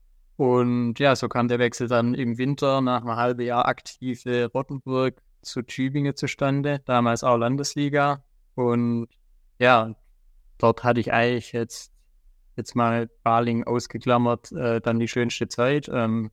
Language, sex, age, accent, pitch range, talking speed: German, male, 20-39, German, 120-135 Hz, 140 wpm